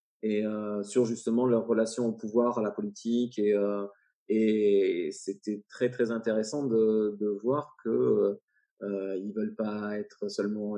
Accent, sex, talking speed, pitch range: French, male, 155 wpm, 105-135 Hz